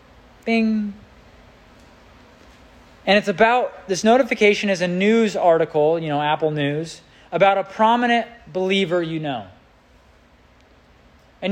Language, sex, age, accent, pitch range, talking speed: English, male, 30-49, American, 175-230 Hz, 110 wpm